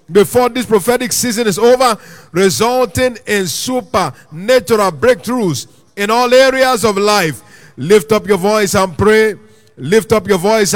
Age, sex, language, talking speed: 50-69, male, English, 140 wpm